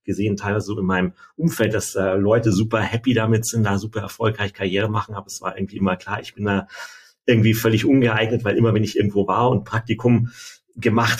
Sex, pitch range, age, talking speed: male, 100-115 Hz, 40-59, 210 wpm